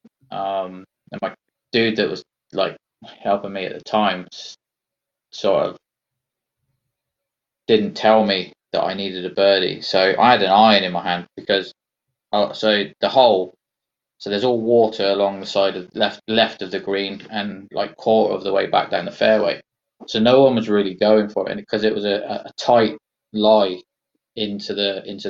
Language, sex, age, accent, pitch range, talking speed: English, male, 20-39, British, 100-110 Hz, 180 wpm